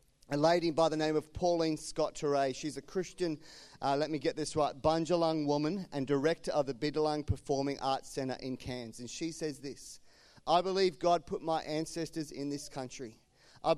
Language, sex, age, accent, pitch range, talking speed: English, male, 40-59, Australian, 140-175 Hz, 185 wpm